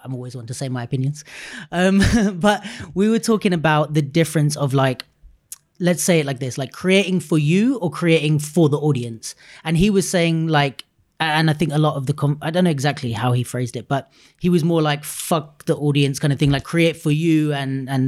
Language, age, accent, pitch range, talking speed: English, 30-49, British, 140-175 Hz, 225 wpm